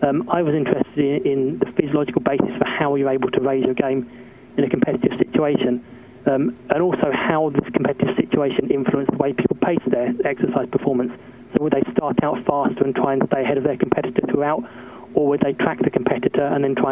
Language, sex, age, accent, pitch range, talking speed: English, male, 20-39, British, 125-140 Hz, 210 wpm